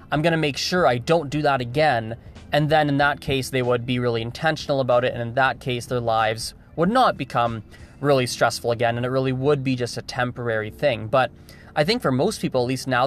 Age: 20-39